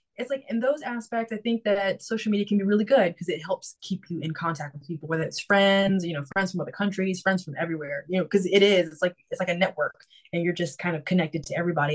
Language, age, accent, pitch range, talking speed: English, 20-39, American, 170-200 Hz, 270 wpm